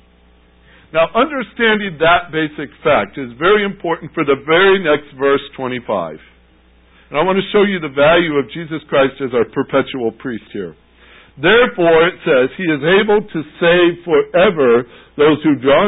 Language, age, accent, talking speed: English, 60-79, American, 160 wpm